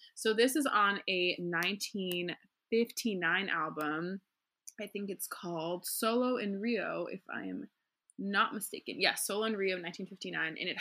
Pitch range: 175-210 Hz